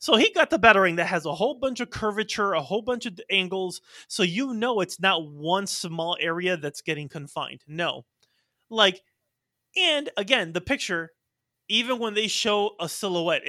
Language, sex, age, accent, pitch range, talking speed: English, male, 30-49, American, 170-230 Hz, 180 wpm